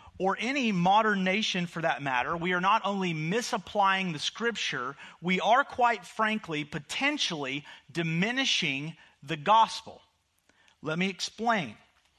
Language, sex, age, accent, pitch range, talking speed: English, male, 40-59, American, 170-235 Hz, 125 wpm